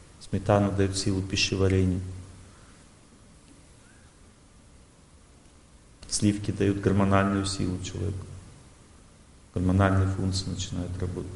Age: 40-59